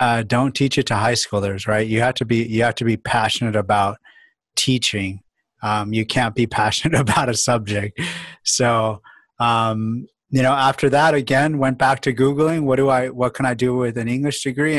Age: 30-49